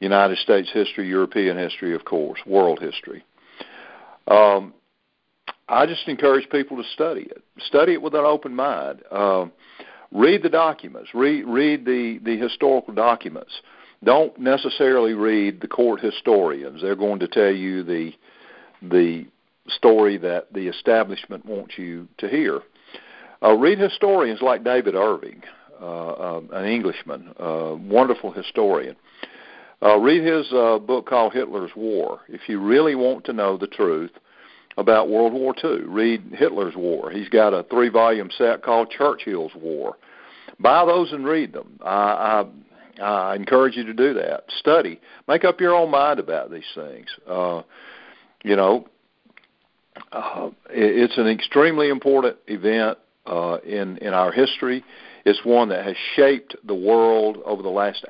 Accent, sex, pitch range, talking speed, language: American, male, 100-140 Hz, 150 wpm, English